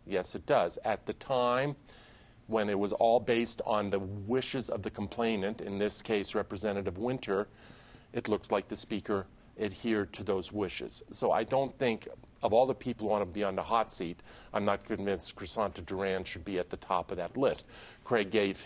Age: 40-59